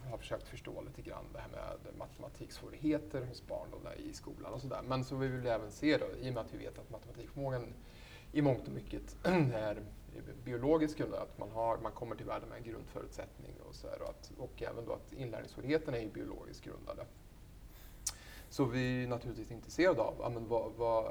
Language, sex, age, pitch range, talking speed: Swedish, male, 30-49, 110-140 Hz, 200 wpm